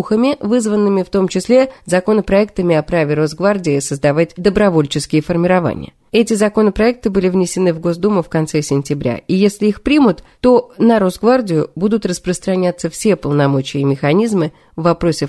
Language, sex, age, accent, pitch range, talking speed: Russian, female, 20-39, native, 170-235 Hz, 135 wpm